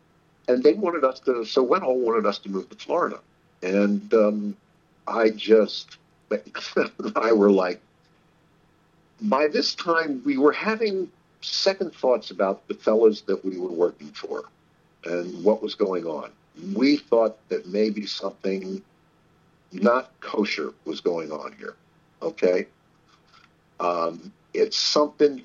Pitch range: 100-165 Hz